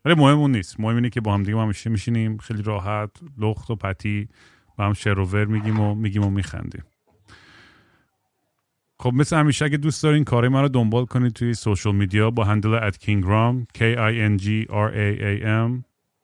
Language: Persian